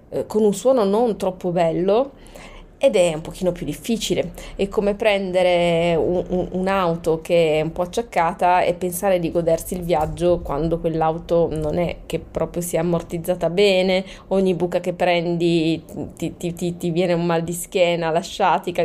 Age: 20-39